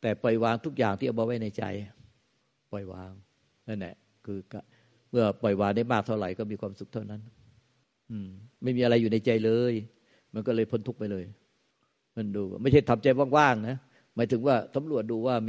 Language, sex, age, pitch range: Thai, male, 60-79, 105-120 Hz